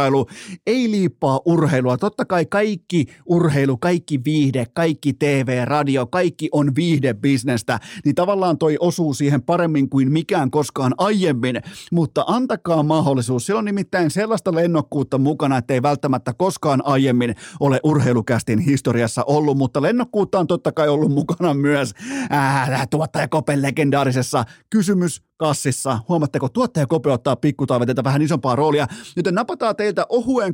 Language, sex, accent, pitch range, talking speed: Finnish, male, native, 135-175 Hz, 130 wpm